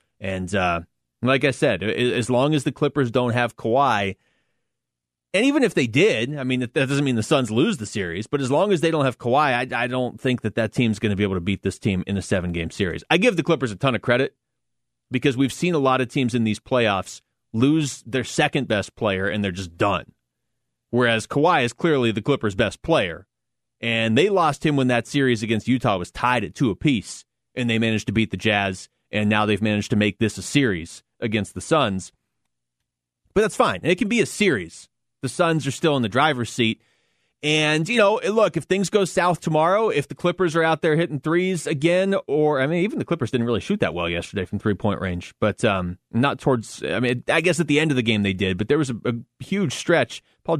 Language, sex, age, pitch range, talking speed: English, male, 30-49, 100-145 Hz, 230 wpm